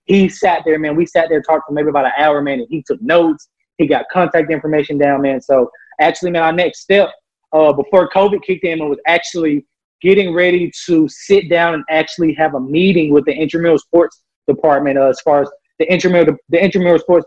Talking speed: 215 wpm